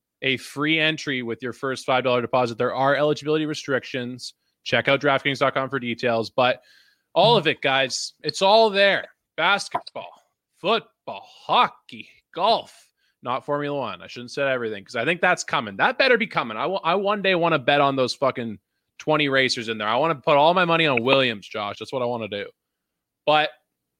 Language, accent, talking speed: English, American, 195 wpm